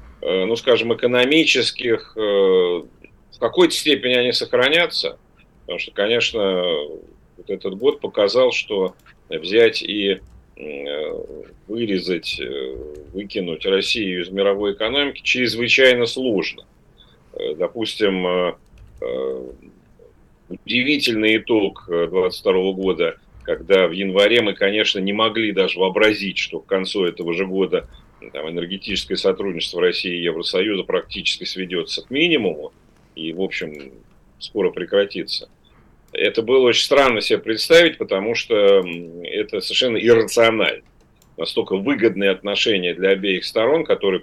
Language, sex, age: Russian, male, 40-59